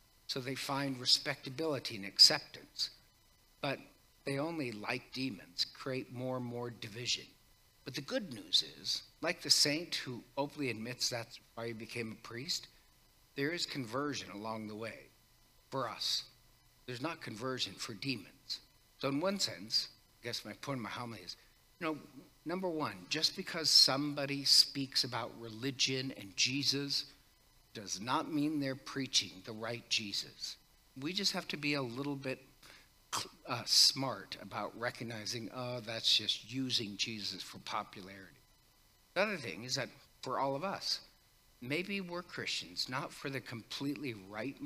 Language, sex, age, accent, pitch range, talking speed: English, male, 60-79, American, 120-145 Hz, 155 wpm